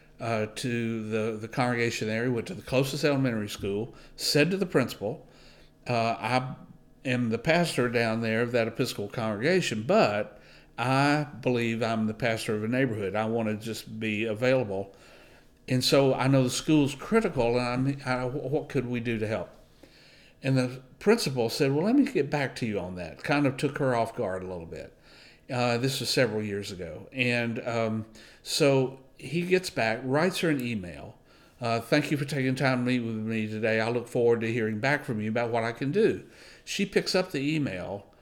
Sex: male